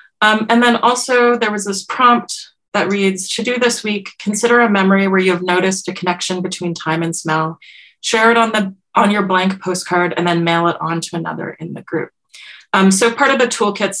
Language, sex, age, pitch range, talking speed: English, female, 20-39, 175-215 Hz, 220 wpm